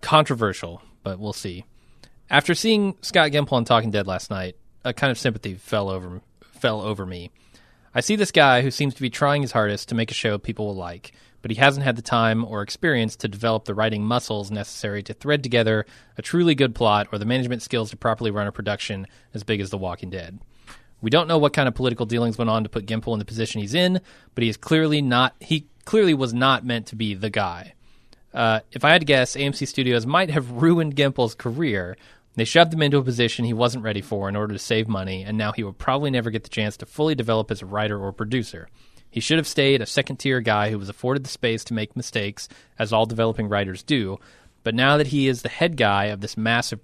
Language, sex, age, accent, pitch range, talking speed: English, male, 30-49, American, 105-135 Hz, 235 wpm